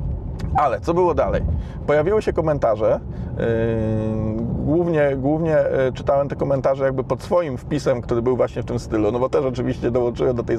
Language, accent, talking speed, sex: Polish, native, 165 wpm, male